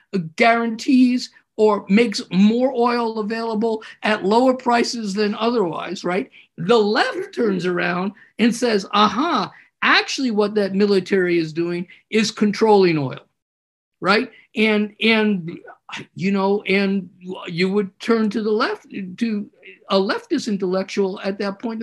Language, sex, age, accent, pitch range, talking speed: English, male, 50-69, American, 195-245 Hz, 130 wpm